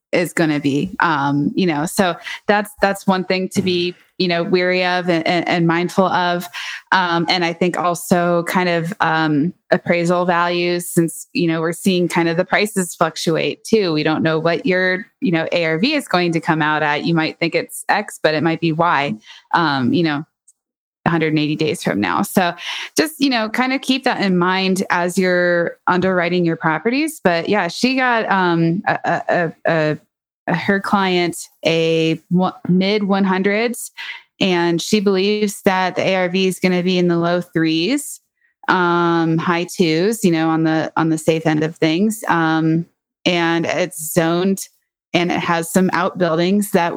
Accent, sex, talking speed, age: American, female, 175 wpm, 20-39